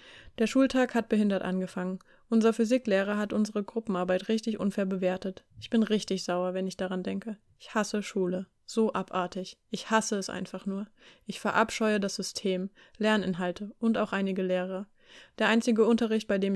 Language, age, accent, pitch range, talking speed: German, 20-39, German, 190-220 Hz, 165 wpm